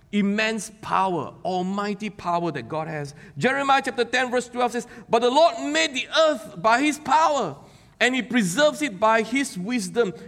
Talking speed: 170 wpm